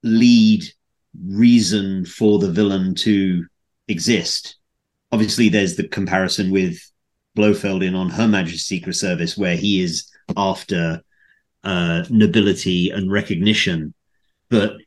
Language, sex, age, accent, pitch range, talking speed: English, male, 30-49, British, 95-110 Hz, 115 wpm